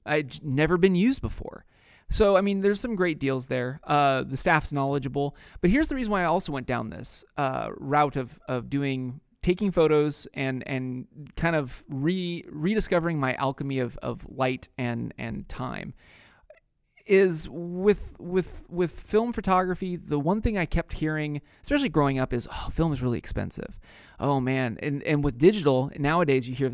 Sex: male